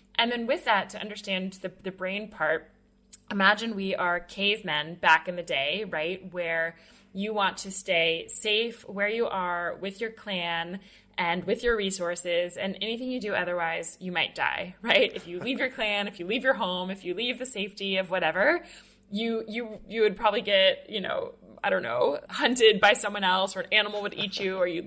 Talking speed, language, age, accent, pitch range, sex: 205 wpm, English, 20-39, American, 180-220 Hz, female